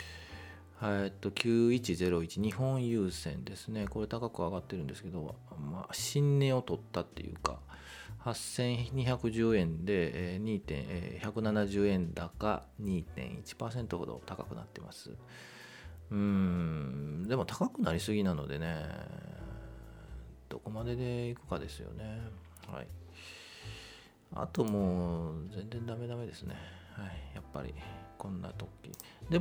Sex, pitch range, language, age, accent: male, 85-115 Hz, Japanese, 40-59, native